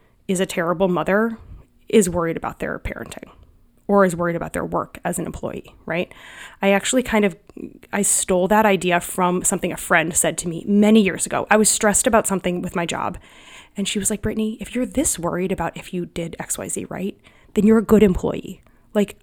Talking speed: 210 wpm